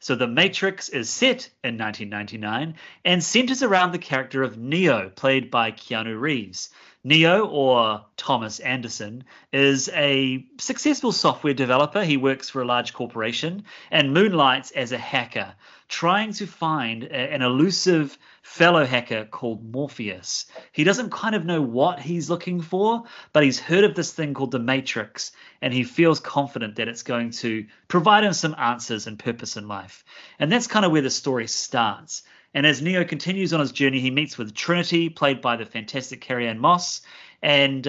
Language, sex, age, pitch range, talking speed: English, male, 30-49, 120-170 Hz, 170 wpm